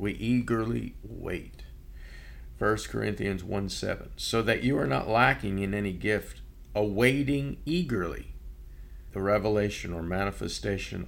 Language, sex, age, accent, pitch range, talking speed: English, male, 50-69, American, 80-110 Hz, 120 wpm